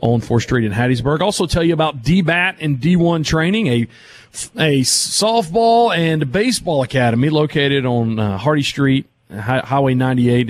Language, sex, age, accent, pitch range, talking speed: English, male, 40-59, American, 125-180 Hz, 145 wpm